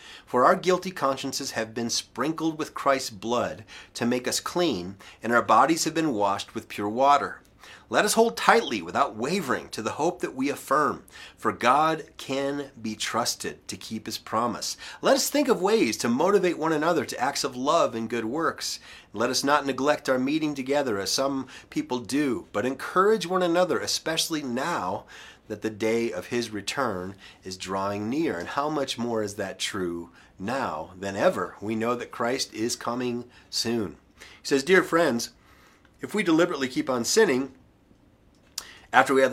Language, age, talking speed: English, 30-49, 175 wpm